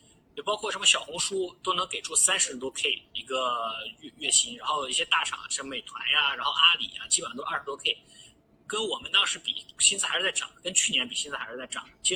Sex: male